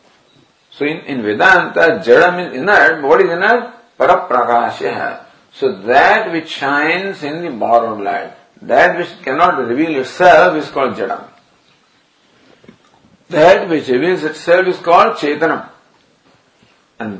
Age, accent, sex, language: 50-69, Indian, male, English